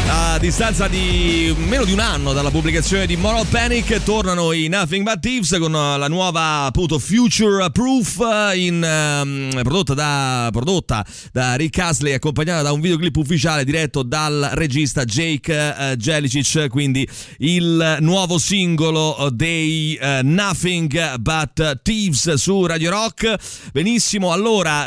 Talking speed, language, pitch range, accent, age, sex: 135 wpm, Italian, 130-170 Hz, native, 30-49, male